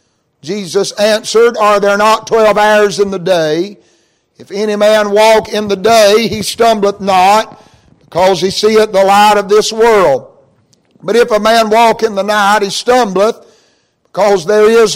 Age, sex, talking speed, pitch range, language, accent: 60-79, male, 165 wpm, 205-225 Hz, English, American